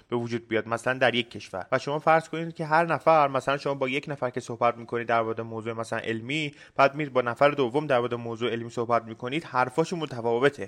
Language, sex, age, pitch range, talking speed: Persian, male, 20-39, 115-145 Hz, 215 wpm